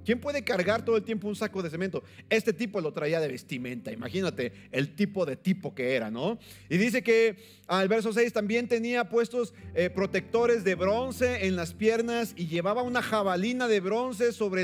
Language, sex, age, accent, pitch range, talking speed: Spanish, male, 40-59, Mexican, 180-240 Hz, 190 wpm